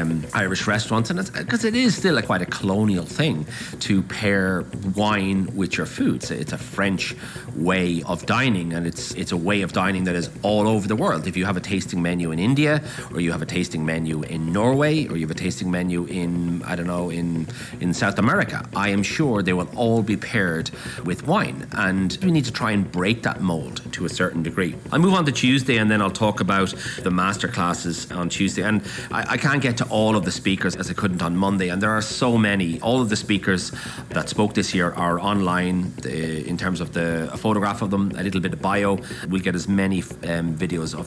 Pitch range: 90-110 Hz